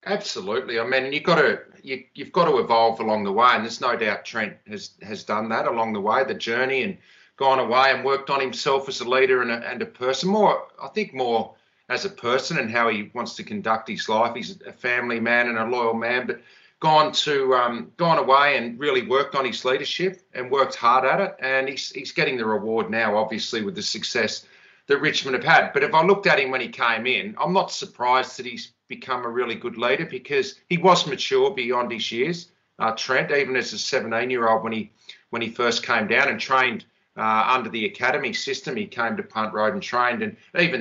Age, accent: 40-59, Australian